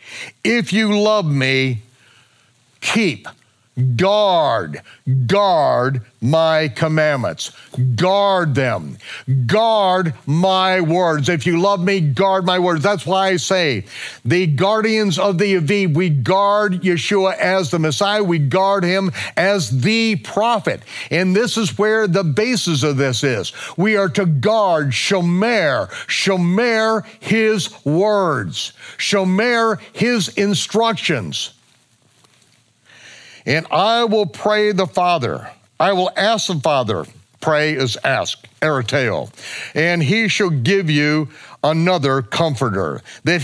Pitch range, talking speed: 150-205 Hz, 115 wpm